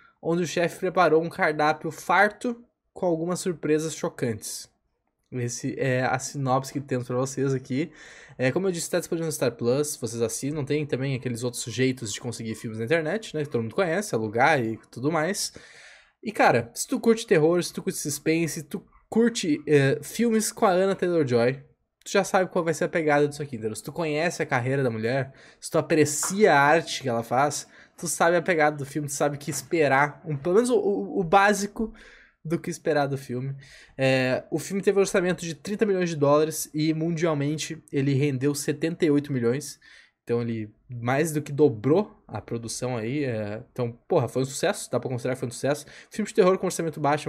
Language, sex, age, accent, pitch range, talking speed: Portuguese, male, 10-29, Brazilian, 125-165 Hz, 205 wpm